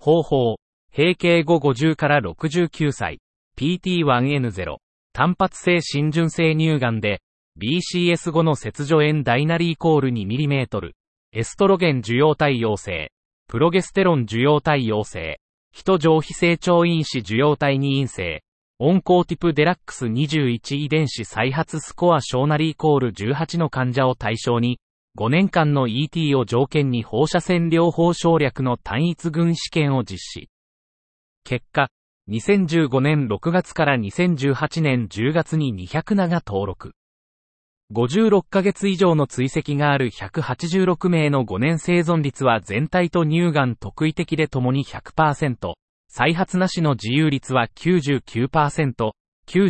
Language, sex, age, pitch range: Japanese, male, 30-49, 125-165 Hz